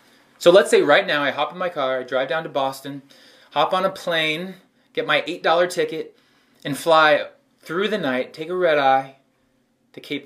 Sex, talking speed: male, 200 wpm